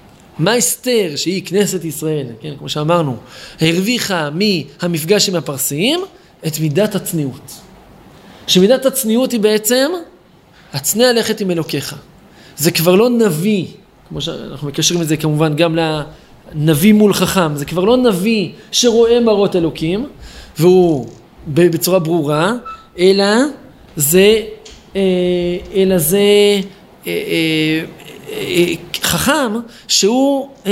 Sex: male